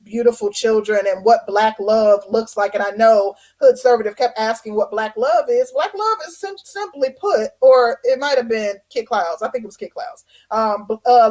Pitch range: 225-275 Hz